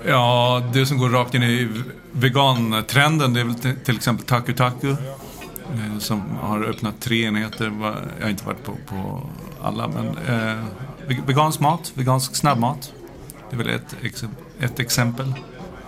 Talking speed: 140 wpm